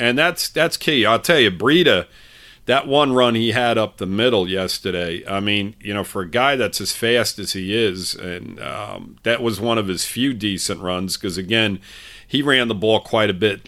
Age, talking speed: 40-59, 215 wpm